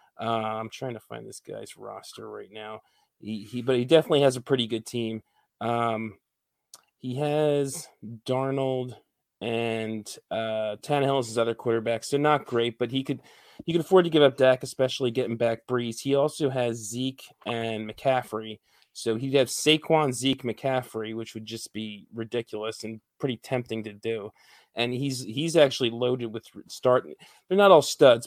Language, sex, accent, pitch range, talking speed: English, male, American, 110-130 Hz, 175 wpm